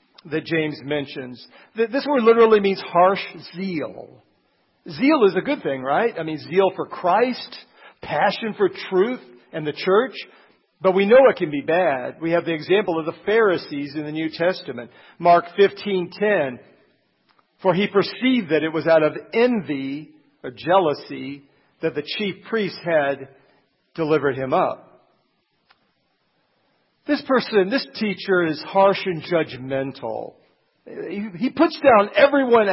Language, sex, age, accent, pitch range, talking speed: English, male, 50-69, American, 155-220 Hz, 140 wpm